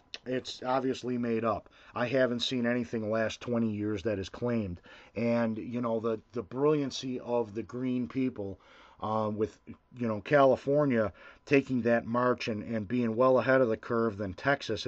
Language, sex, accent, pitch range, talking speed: English, male, American, 110-130 Hz, 170 wpm